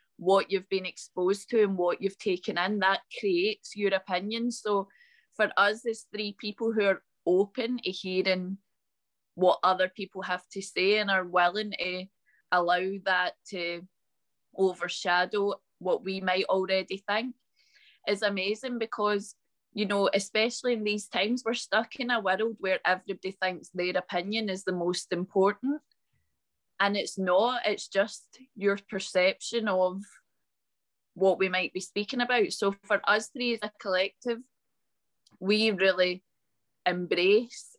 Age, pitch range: 20-39, 185-220 Hz